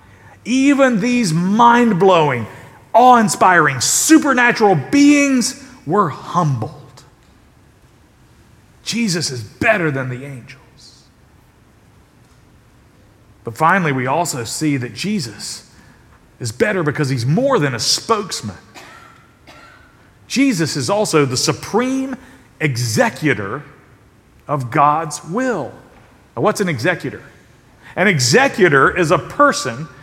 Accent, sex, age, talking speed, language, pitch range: American, male, 40-59, 95 wpm, English, 140-210 Hz